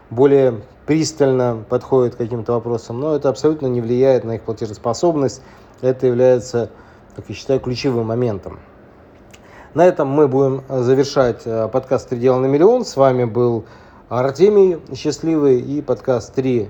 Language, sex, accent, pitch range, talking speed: Russian, male, native, 120-145 Hz, 140 wpm